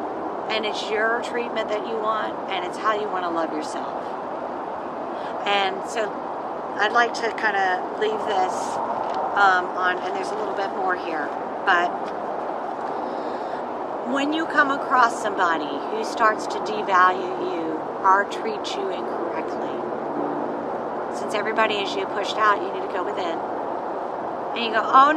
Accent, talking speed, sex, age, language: American, 150 wpm, female, 40-59, English